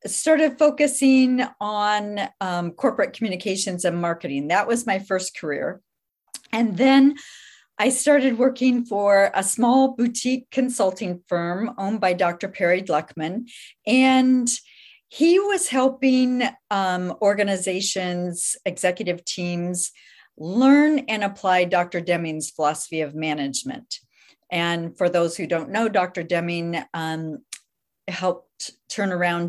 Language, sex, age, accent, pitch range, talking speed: English, female, 50-69, American, 175-250 Hz, 115 wpm